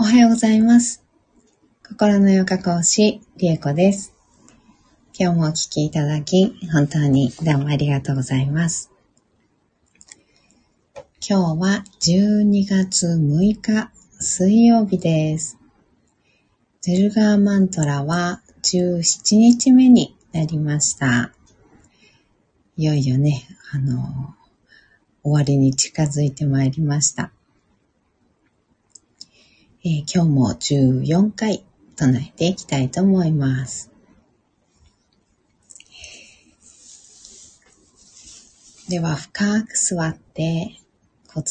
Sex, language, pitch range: female, Japanese, 140-190 Hz